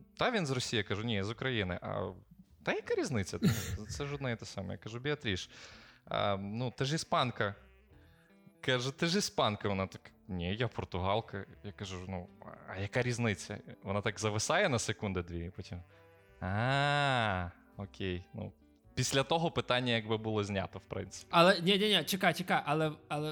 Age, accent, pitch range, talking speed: 20-39, native, 100-145 Hz, 165 wpm